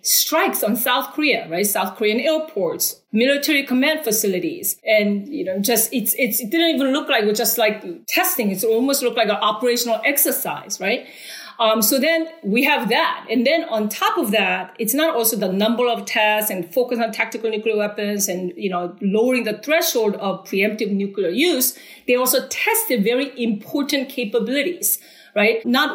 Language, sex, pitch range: English, female, 205-265 Hz